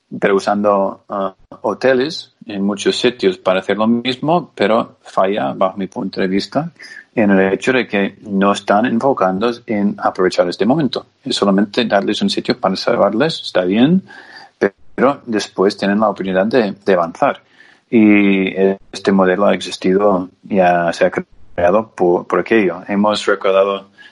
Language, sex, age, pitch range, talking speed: Spanish, male, 30-49, 95-110 Hz, 150 wpm